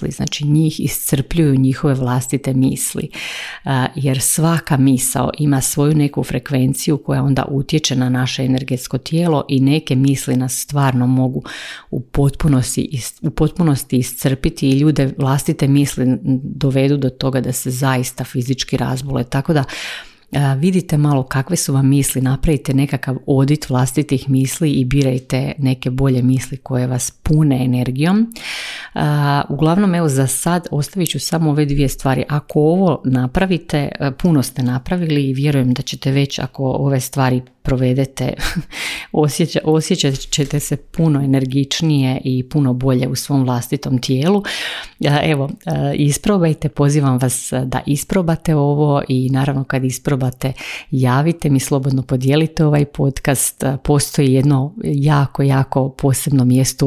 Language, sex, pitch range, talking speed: Croatian, female, 130-155 Hz, 135 wpm